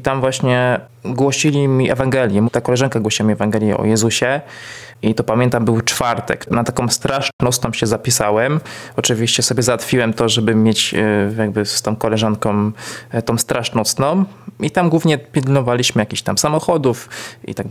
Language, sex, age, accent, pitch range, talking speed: Polish, male, 20-39, native, 115-135 Hz, 150 wpm